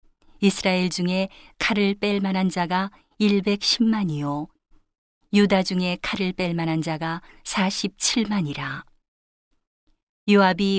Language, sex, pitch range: Korean, female, 175-205 Hz